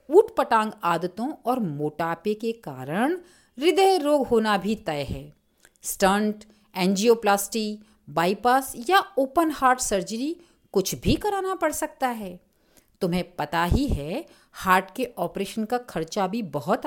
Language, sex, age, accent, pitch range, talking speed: Hindi, female, 50-69, native, 185-295 Hz, 130 wpm